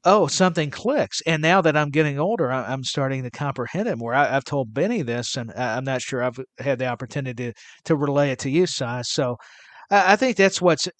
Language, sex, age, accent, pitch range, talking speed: English, male, 50-69, American, 125-150 Hz, 220 wpm